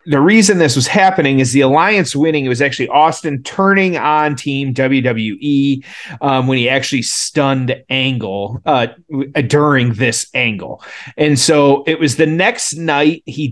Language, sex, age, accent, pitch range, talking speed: English, male, 30-49, American, 120-150 Hz, 155 wpm